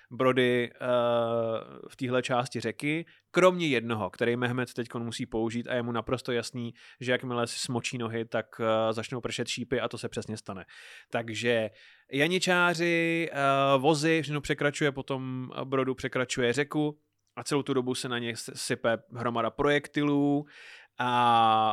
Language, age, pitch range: Czech, 20-39, 115-140 Hz